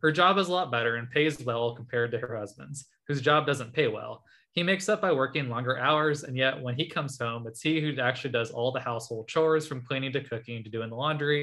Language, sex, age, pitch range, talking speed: English, male, 20-39, 120-155 Hz, 250 wpm